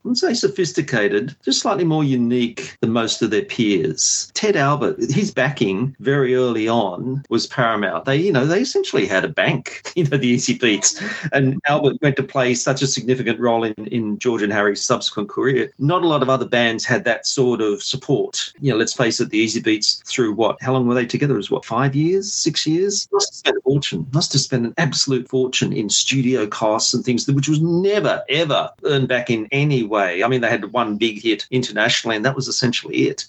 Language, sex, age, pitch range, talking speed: English, male, 40-59, 115-140 Hz, 220 wpm